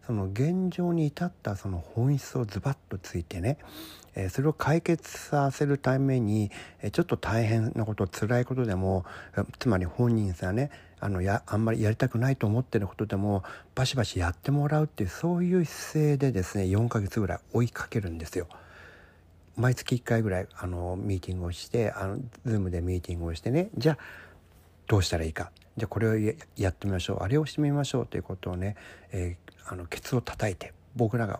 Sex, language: male, Japanese